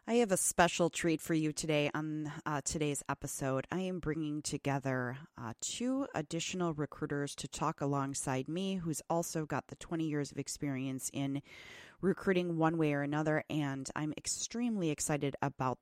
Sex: female